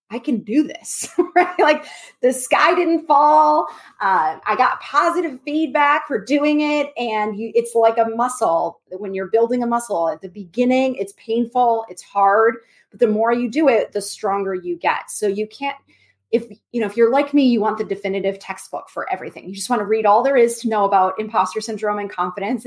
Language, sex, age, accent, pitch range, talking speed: English, female, 30-49, American, 195-270 Hz, 200 wpm